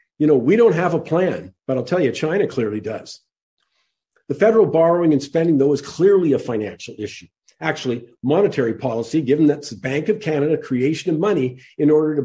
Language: English